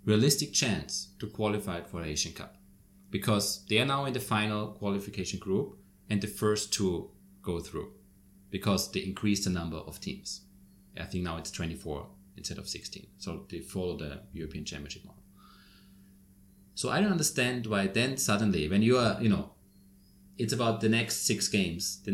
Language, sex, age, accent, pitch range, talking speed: English, male, 30-49, German, 95-105 Hz, 175 wpm